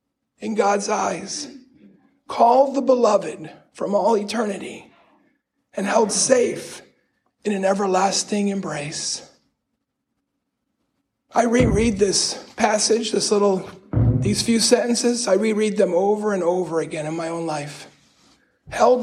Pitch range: 195-245 Hz